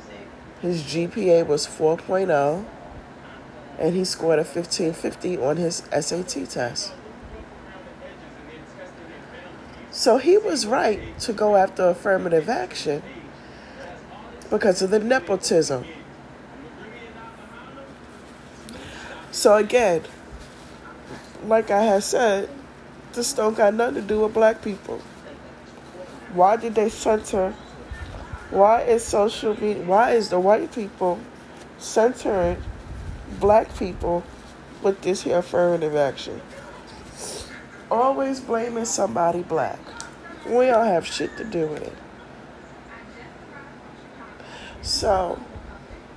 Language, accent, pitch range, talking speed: English, American, 175-225 Hz, 95 wpm